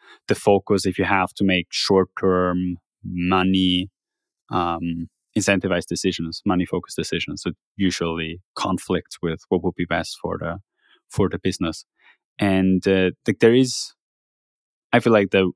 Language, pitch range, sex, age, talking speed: English, 90-105 Hz, male, 20-39, 145 wpm